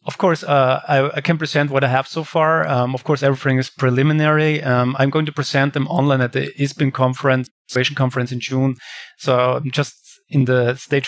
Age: 30-49